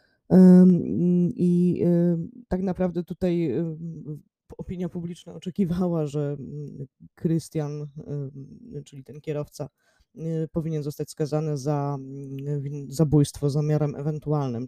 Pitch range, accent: 135-160 Hz, native